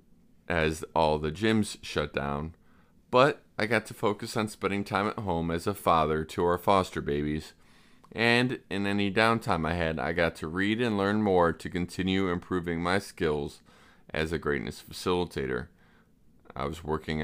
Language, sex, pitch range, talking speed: English, male, 80-100 Hz, 165 wpm